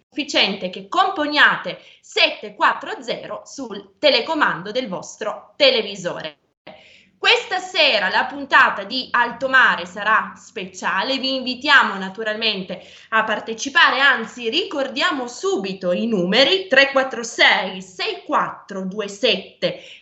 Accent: native